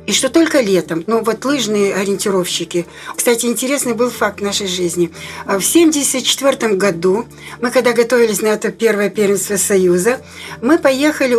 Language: Russian